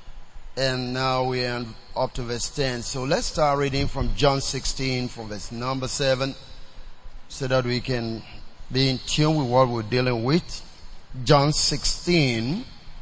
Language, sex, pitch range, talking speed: English, male, 115-150 Hz, 150 wpm